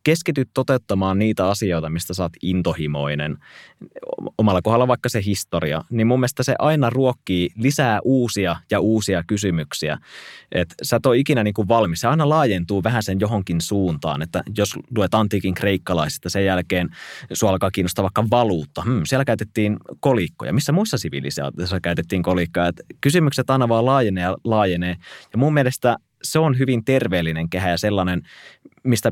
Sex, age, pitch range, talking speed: male, 20-39, 90-125 Hz, 160 wpm